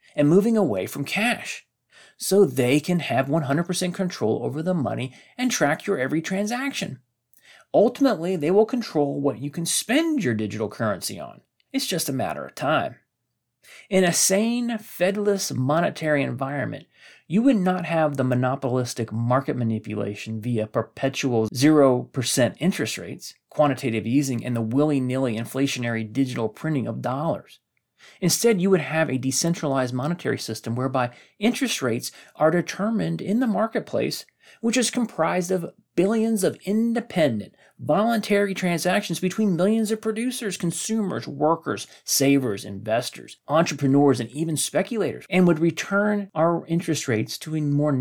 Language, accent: English, American